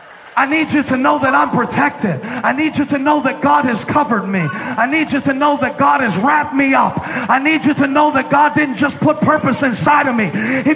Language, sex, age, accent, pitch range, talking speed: English, male, 40-59, American, 255-320 Hz, 245 wpm